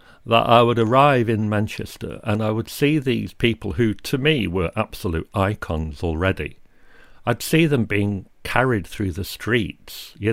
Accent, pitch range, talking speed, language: British, 95-130 Hz, 165 wpm, English